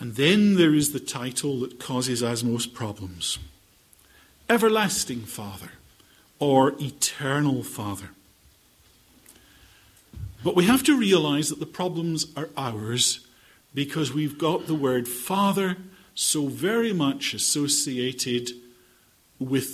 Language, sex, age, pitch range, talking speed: English, male, 50-69, 135-200 Hz, 110 wpm